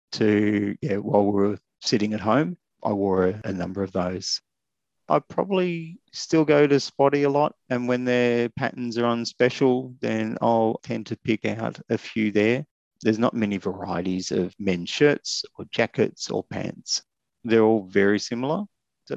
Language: English